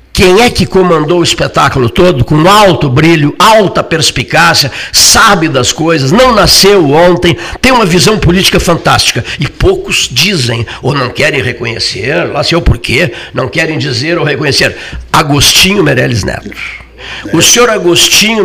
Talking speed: 145 wpm